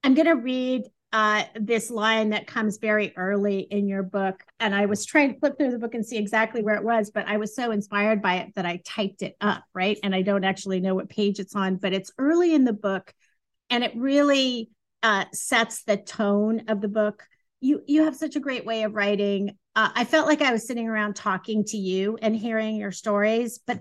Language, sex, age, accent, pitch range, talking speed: English, female, 40-59, American, 200-235 Hz, 230 wpm